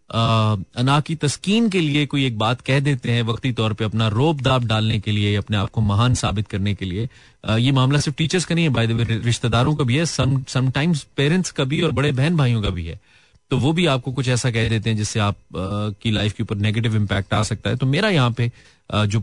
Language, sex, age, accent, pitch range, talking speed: Hindi, male, 30-49, native, 105-140 Hz, 260 wpm